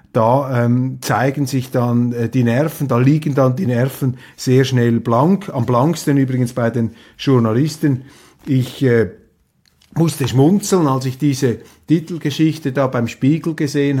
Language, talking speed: German, 145 wpm